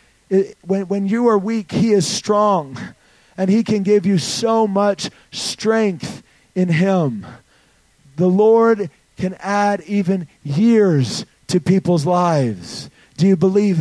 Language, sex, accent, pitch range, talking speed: English, male, American, 155-205 Hz, 130 wpm